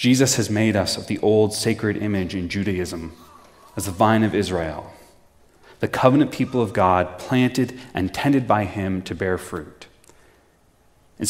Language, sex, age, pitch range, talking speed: English, male, 30-49, 105-135 Hz, 160 wpm